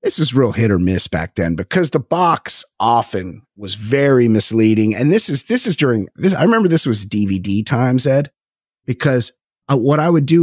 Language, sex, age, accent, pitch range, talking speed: English, male, 30-49, American, 115-175 Hz, 200 wpm